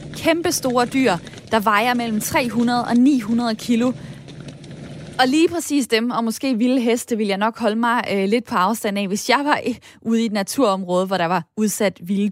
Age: 20-39